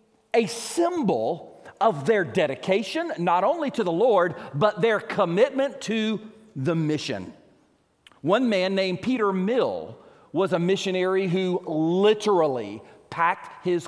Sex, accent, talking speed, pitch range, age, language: male, American, 115 wpm, 175-220 Hz, 40-59, English